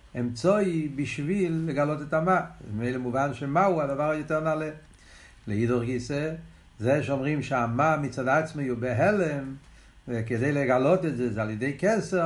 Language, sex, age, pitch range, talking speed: Hebrew, male, 60-79, 125-165 Hz, 140 wpm